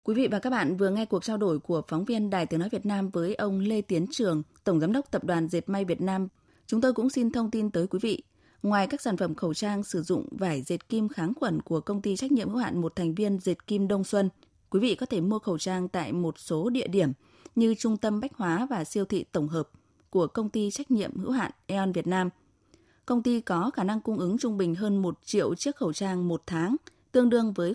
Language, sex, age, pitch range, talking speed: Vietnamese, female, 20-39, 175-225 Hz, 260 wpm